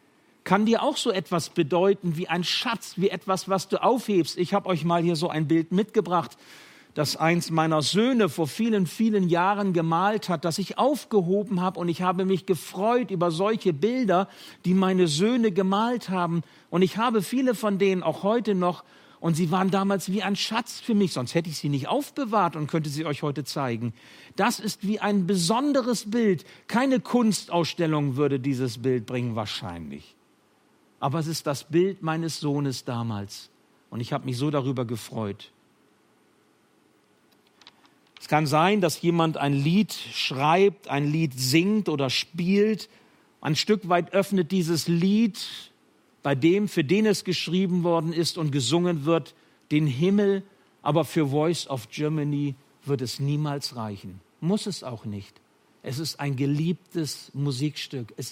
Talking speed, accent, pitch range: 165 wpm, German, 150-200 Hz